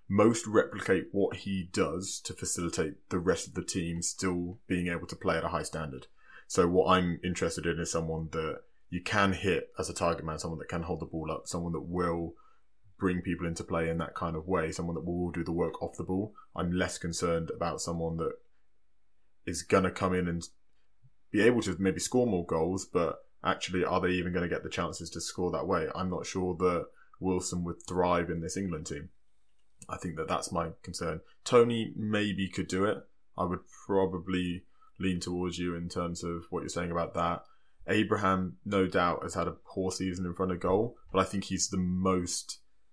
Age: 20-39